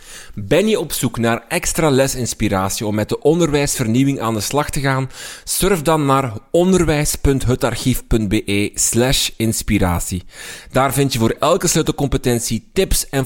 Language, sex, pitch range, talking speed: Dutch, male, 105-150 Hz, 135 wpm